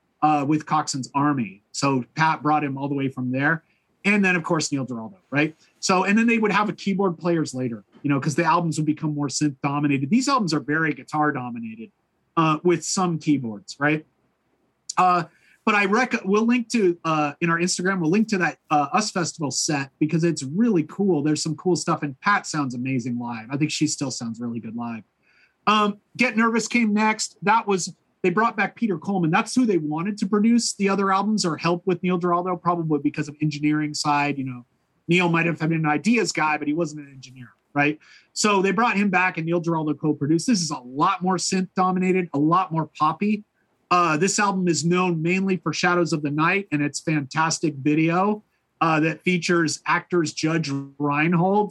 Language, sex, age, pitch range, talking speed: English, male, 30-49, 150-185 Hz, 205 wpm